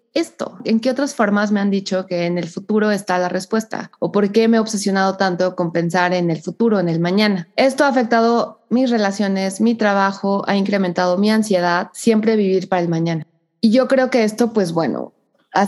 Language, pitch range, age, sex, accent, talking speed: Spanish, 180-225 Hz, 20-39, female, Mexican, 205 wpm